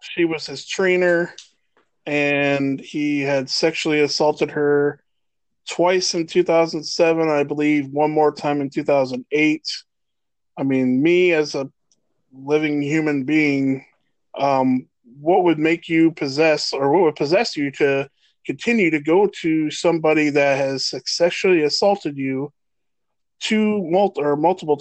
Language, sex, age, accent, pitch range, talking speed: English, male, 20-39, American, 135-160 Hz, 130 wpm